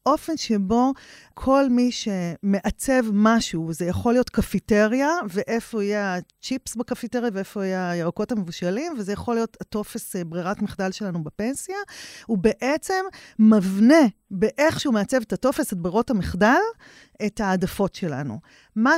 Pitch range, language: 190-250 Hz, Hebrew